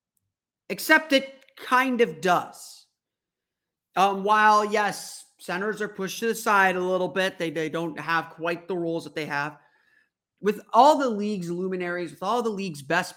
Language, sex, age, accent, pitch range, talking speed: English, male, 30-49, American, 155-210 Hz, 170 wpm